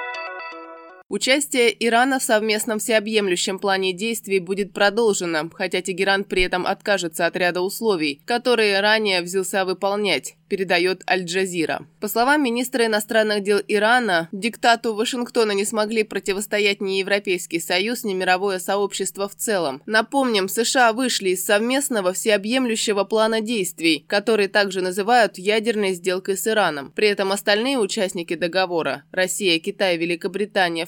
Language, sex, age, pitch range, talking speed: Russian, female, 20-39, 185-220 Hz, 125 wpm